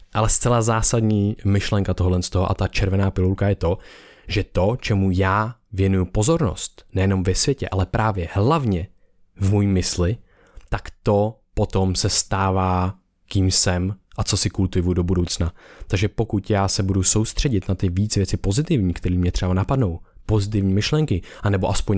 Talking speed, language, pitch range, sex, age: 160 wpm, Czech, 95-105 Hz, male, 20-39